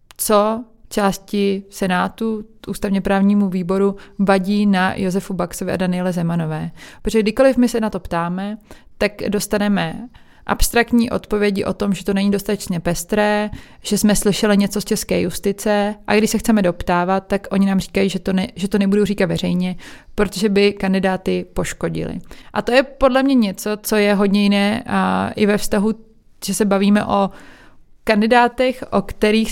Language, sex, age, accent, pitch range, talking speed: Czech, female, 20-39, native, 185-210 Hz, 155 wpm